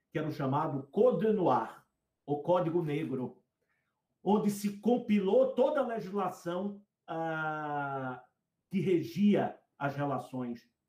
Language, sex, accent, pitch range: Portuguese, male, Brazilian, 140-200 Hz